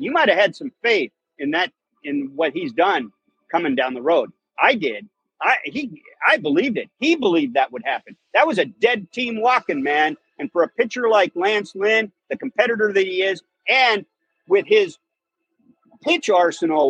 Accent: American